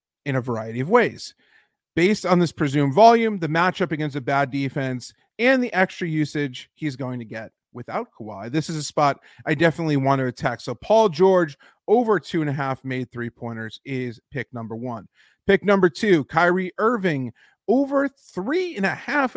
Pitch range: 130-185 Hz